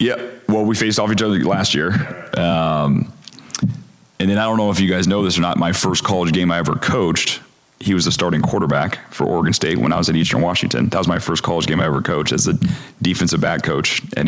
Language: English